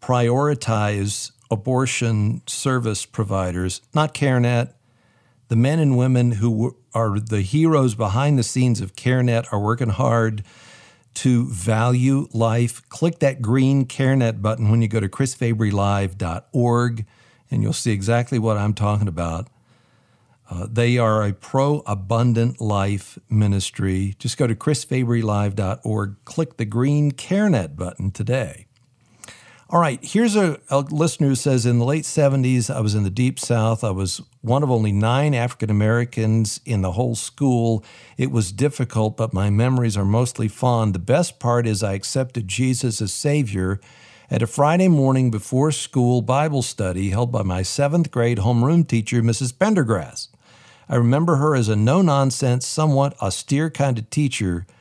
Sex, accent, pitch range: male, American, 110-130 Hz